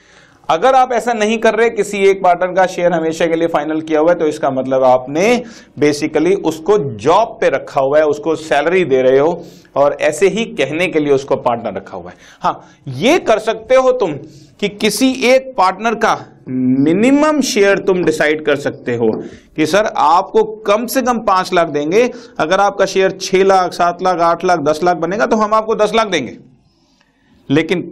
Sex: male